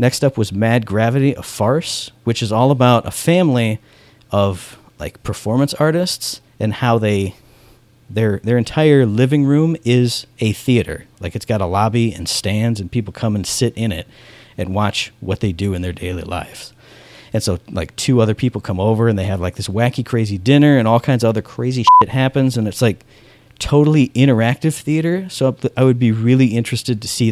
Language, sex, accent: English, male, American